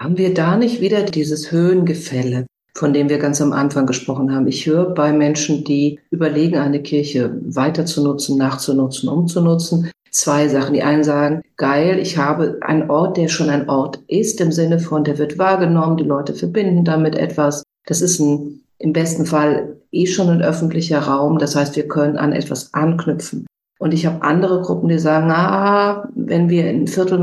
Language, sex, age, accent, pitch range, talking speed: German, female, 50-69, German, 150-175 Hz, 185 wpm